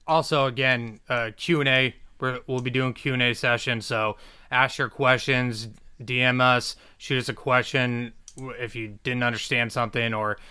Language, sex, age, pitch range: English, male, 20-39, 110-130 Hz